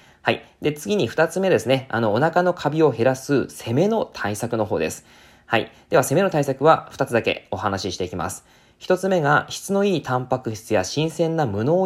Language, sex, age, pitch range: Japanese, male, 20-39, 100-145 Hz